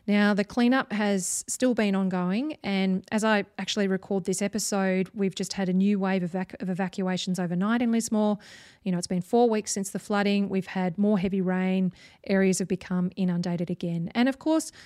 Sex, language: female, English